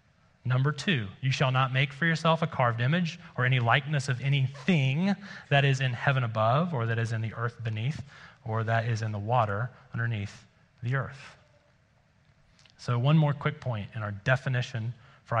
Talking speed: 180 wpm